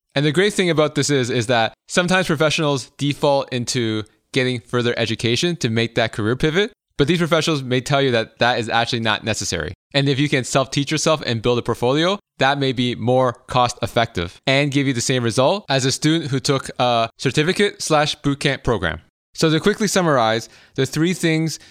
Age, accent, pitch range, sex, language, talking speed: 20-39, American, 120-150 Hz, male, English, 200 wpm